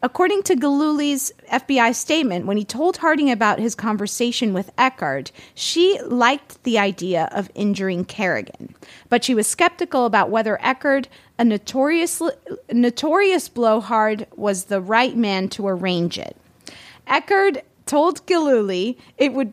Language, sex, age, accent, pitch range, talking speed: English, female, 30-49, American, 195-260 Hz, 135 wpm